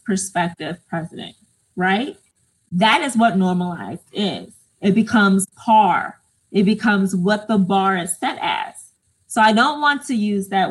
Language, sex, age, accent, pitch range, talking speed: English, female, 20-39, American, 190-240 Hz, 145 wpm